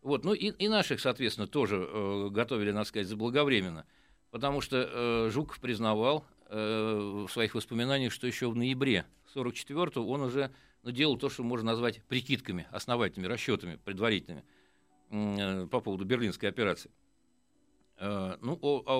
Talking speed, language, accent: 150 wpm, Russian, native